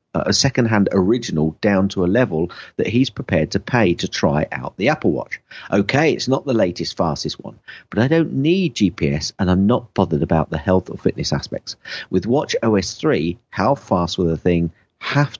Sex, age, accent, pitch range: male, 50-69, British, 85-130 Hz